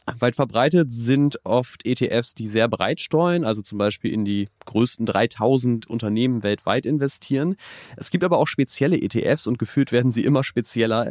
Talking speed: 170 wpm